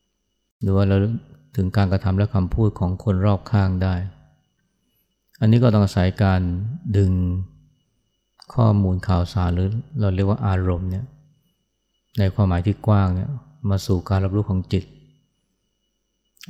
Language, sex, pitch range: Thai, male, 95-105 Hz